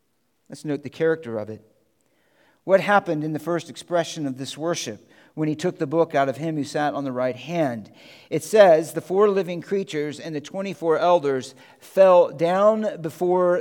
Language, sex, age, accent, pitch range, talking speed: English, male, 50-69, American, 155-195 Hz, 185 wpm